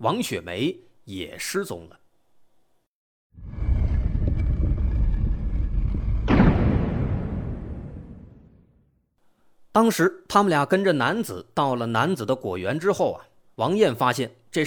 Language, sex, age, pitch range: Chinese, male, 30-49, 115-190 Hz